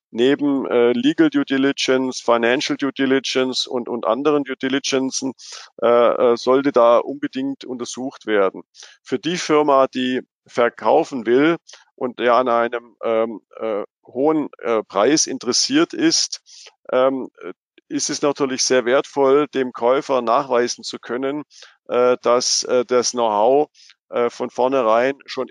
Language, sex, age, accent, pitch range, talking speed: German, male, 50-69, German, 120-140 Hz, 130 wpm